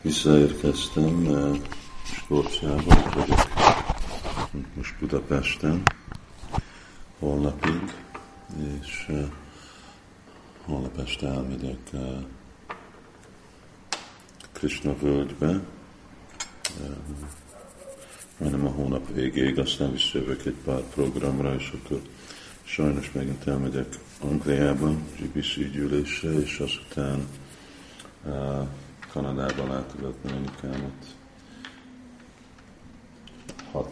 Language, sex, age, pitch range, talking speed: Hungarian, male, 50-69, 70-75 Hz, 65 wpm